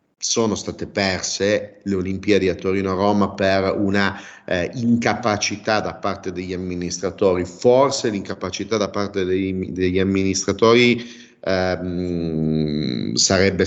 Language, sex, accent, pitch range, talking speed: Italian, male, native, 95-115 Hz, 100 wpm